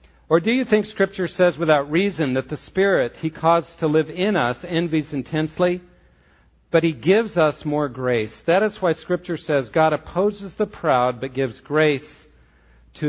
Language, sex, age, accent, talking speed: English, male, 50-69, American, 175 wpm